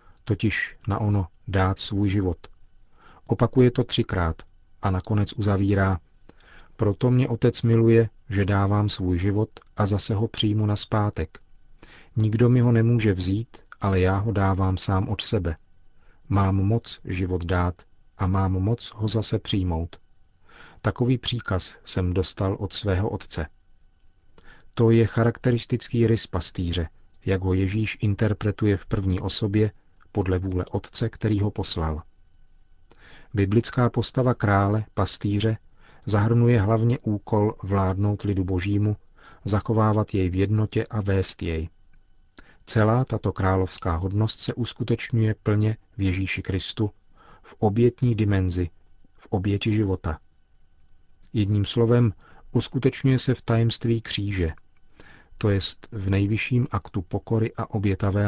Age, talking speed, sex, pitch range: 40-59, 125 wpm, male, 95-115 Hz